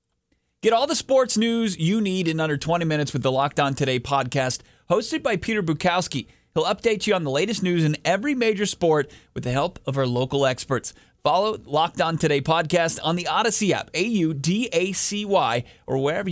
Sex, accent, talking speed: male, American, 190 wpm